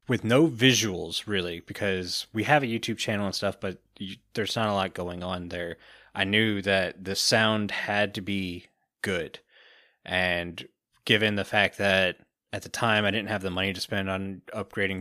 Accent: American